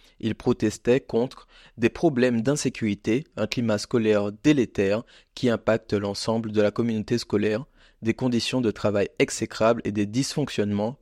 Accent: French